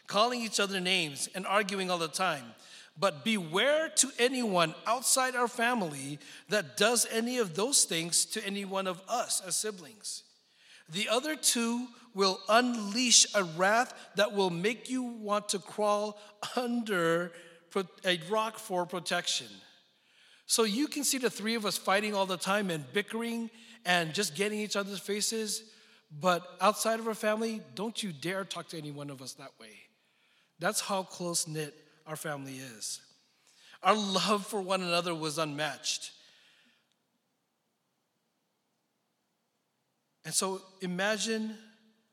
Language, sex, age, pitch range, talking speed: English, male, 40-59, 155-220 Hz, 145 wpm